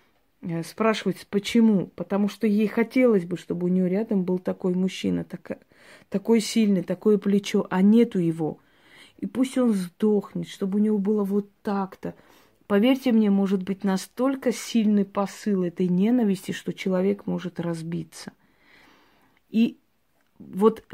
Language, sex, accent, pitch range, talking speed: Russian, female, native, 185-215 Hz, 135 wpm